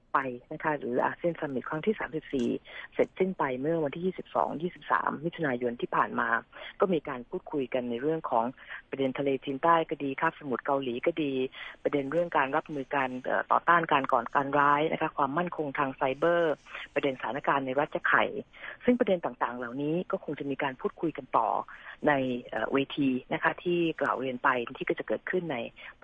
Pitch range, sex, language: 135-170 Hz, female, Thai